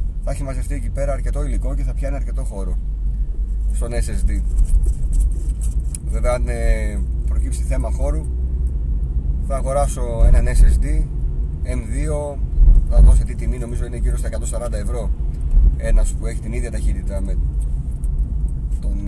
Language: Greek